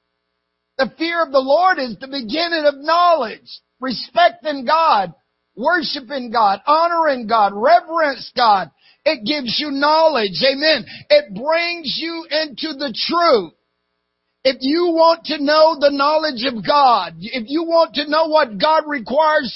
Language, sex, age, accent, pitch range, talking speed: English, male, 50-69, American, 260-310 Hz, 140 wpm